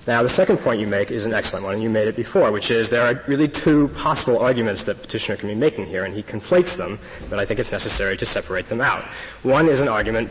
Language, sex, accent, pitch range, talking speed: English, male, American, 105-125 Hz, 270 wpm